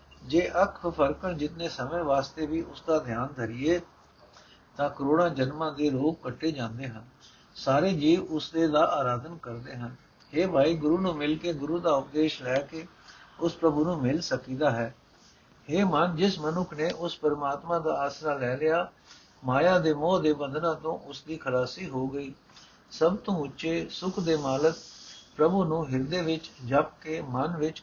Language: Punjabi